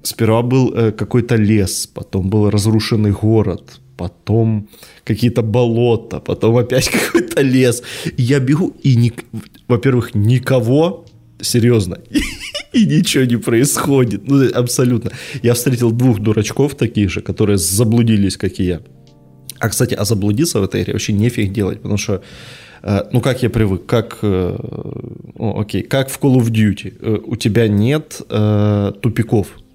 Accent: native